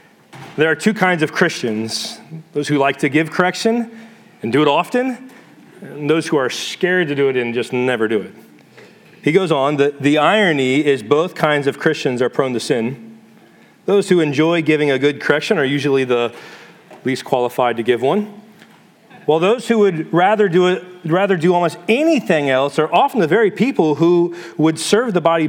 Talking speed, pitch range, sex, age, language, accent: 190 wpm, 140-195 Hz, male, 40-59, English, American